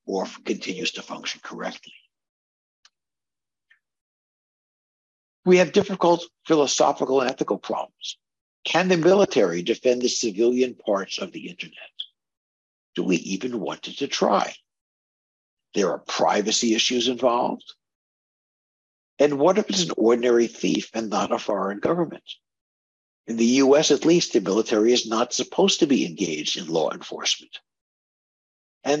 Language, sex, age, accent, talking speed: English, male, 60-79, American, 130 wpm